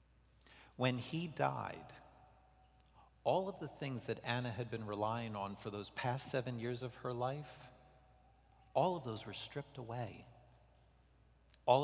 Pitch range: 110-130 Hz